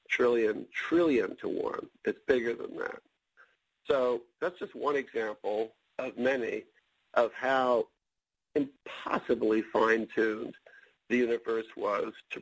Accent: American